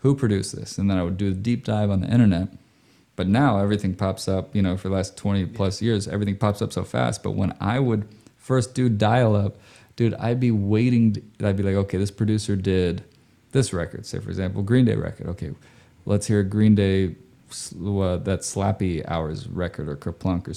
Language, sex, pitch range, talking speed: English, male, 95-110 Hz, 205 wpm